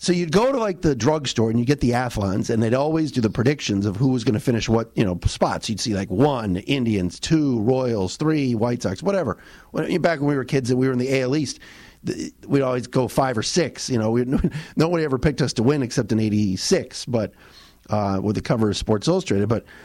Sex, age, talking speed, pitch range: male, 40-59, 245 wpm, 115-160 Hz